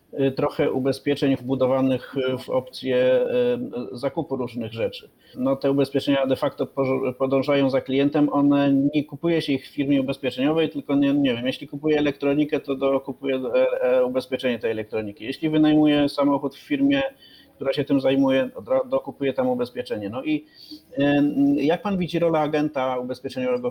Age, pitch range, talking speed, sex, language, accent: 30-49, 130-150 Hz, 145 wpm, male, Polish, native